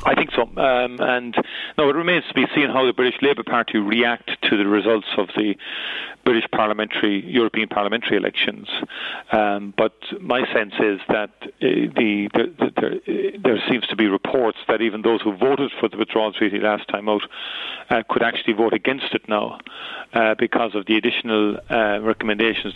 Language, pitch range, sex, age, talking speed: English, 105-115 Hz, male, 40-59, 175 wpm